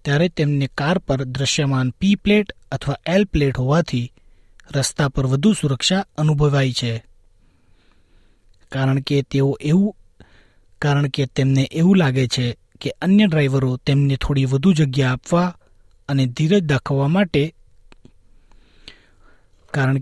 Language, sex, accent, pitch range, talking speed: Gujarati, male, native, 125-155 Hz, 100 wpm